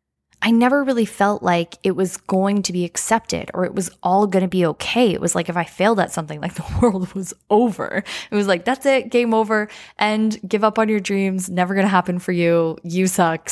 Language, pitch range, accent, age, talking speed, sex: English, 180-240 Hz, American, 10-29, 235 wpm, female